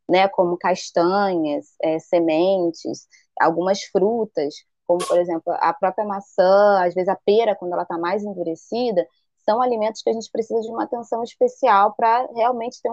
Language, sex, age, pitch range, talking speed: Portuguese, female, 20-39, 185-235 Hz, 160 wpm